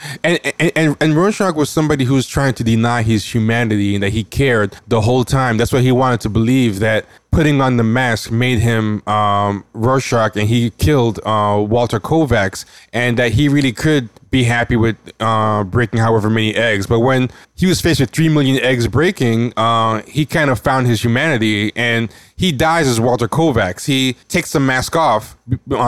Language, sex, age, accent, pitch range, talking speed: English, male, 20-39, American, 115-135 Hz, 190 wpm